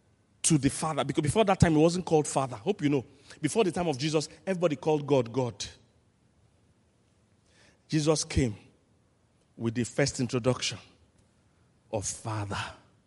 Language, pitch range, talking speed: English, 110-170 Hz, 140 wpm